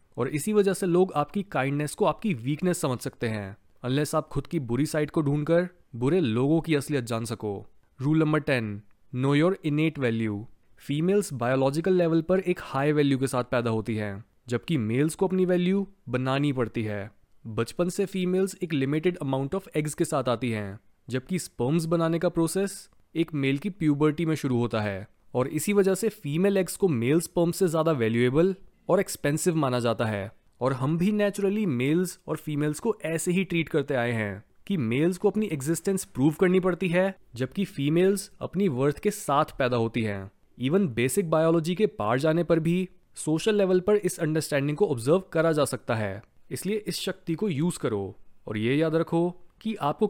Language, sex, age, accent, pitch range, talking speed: Hindi, male, 20-39, native, 125-180 Hz, 180 wpm